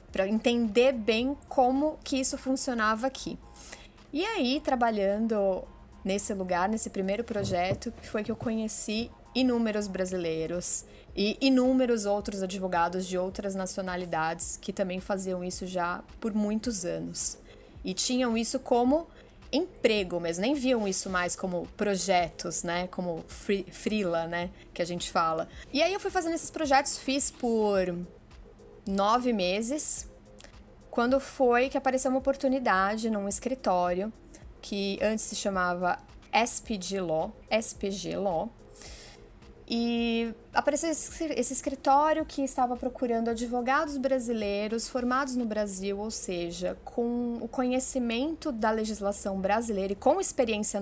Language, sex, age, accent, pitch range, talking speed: Portuguese, female, 20-39, Brazilian, 190-255 Hz, 125 wpm